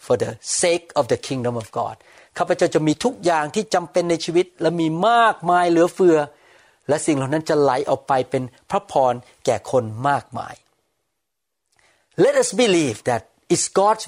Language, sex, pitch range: Thai, male, 125-170 Hz